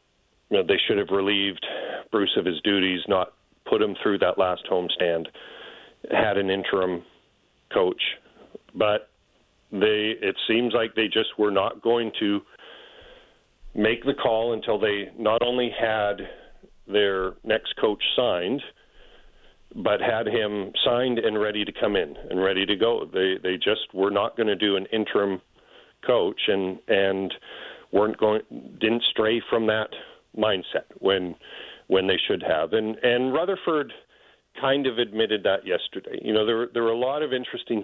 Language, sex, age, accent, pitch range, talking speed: English, male, 40-59, American, 95-120 Hz, 160 wpm